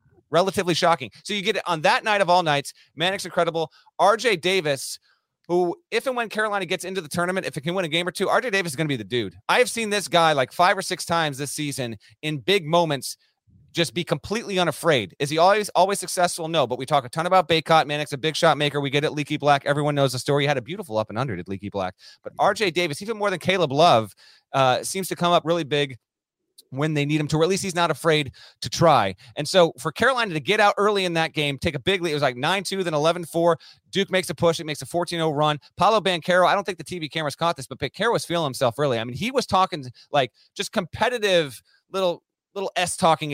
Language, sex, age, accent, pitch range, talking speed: English, male, 30-49, American, 145-180 Hz, 255 wpm